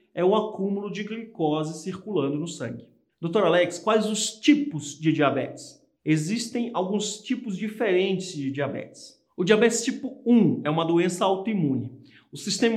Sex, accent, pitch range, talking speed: male, Brazilian, 150-210 Hz, 145 wpm